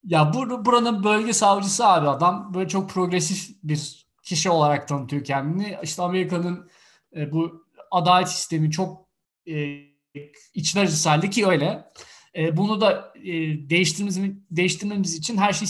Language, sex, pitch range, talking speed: Turkish, male, 155-195 Hz, 135 wpm